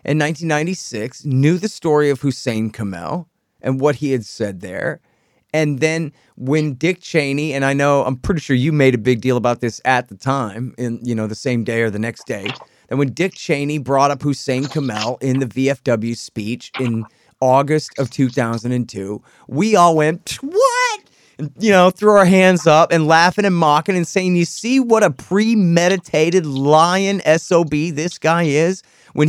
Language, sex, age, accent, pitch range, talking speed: English, male, 30-49, American, 115-155 Hz, 180 wpm